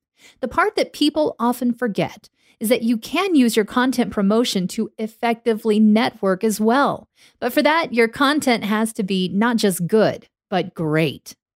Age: 40-59